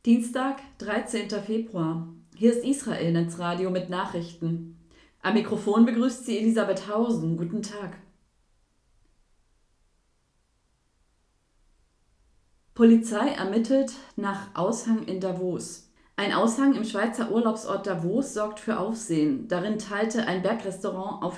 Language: German